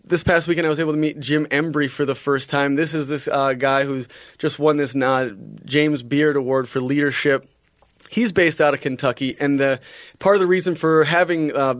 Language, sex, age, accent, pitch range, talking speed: English, male, 20-39, American, 135-155 Hz, 210 wpm